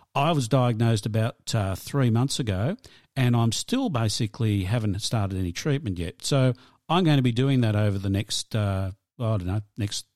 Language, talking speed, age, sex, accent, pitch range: English, 190 wpm, 50-69, male, Australian, 100-130 Hz